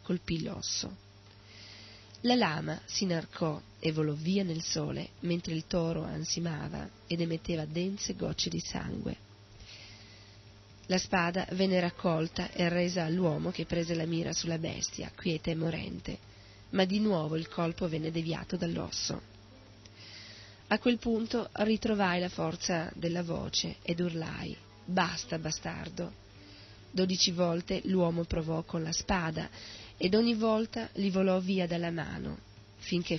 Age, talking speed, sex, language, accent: 30-49, 130 wpm, female, Italian, native